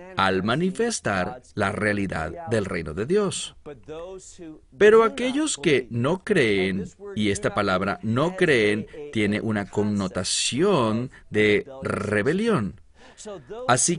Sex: male